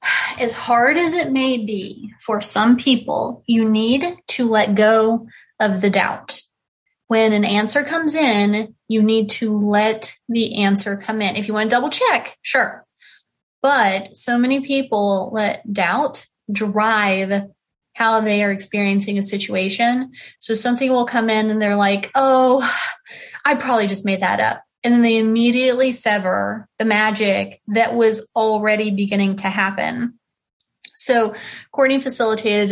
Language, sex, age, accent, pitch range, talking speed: English, female, 20-39, American, 205-235 Hz, 150 wpm